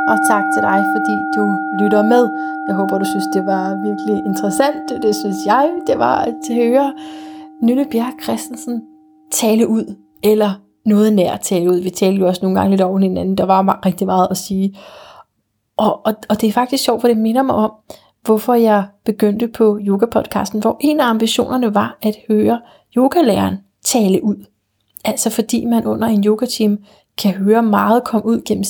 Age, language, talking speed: 30-49, Danish, 185 wpm